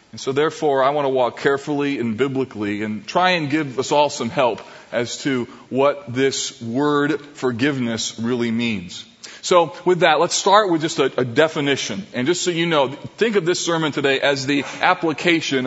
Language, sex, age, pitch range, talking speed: English, male, 20-39, 125-150 Hz, 190 wpm